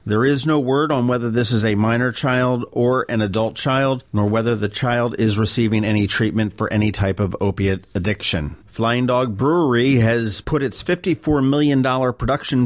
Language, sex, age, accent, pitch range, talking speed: English, male, 50-69, American, 105-125 Hz, 180 wpm